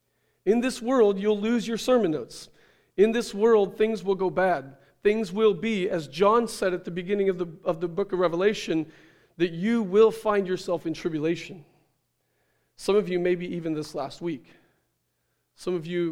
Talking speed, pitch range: 180 wpm, 155-205 Hz